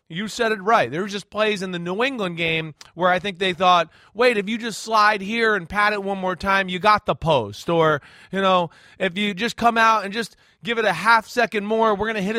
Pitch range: 165-215 Hz